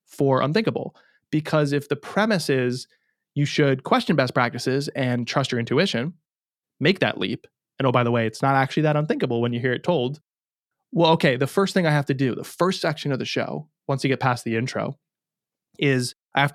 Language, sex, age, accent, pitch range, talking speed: English, male, 20-39, American, 125-165 Hz, 210 wpm